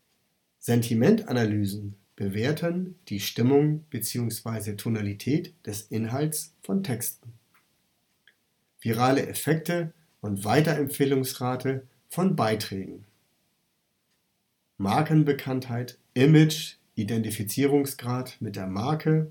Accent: German